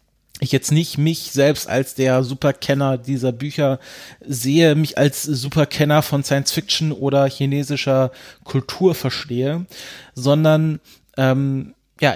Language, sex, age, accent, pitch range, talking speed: German, male, 30-49, German, 125-145 Hz, 115 wpm